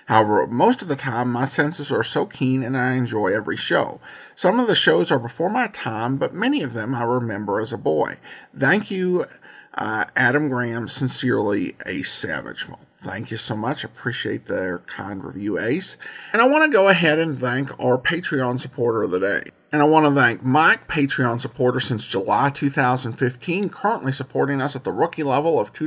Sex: male